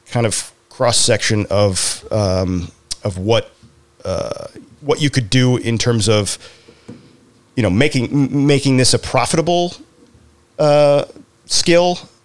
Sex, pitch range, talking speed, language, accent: male, 100-120 Hz, 120 wpm, English, American